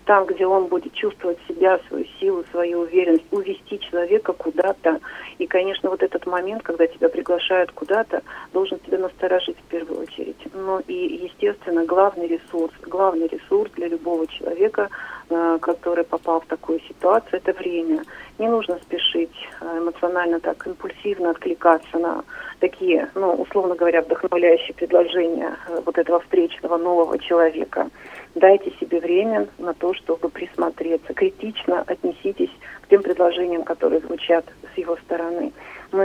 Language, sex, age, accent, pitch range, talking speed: Russian, female, 40-59, native, 170-205 Hz, 140 wpm